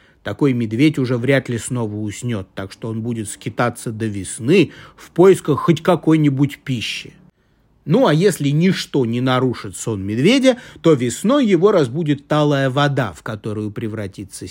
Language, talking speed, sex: Russian, 150 wpm, male